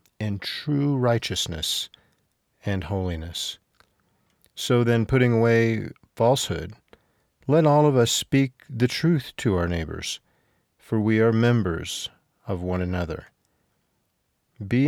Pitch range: 95-125 Hz